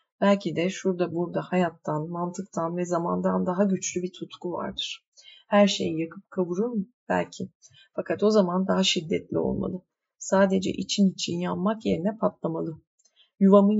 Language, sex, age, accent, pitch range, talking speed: Turkish, female, 30-49, native, 175-200 Hz, 135 wpm